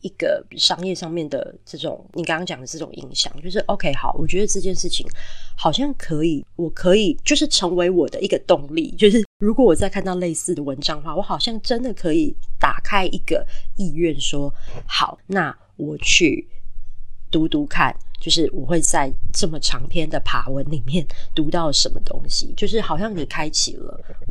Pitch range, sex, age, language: 145-185 Hz, female, 20-39, Chinese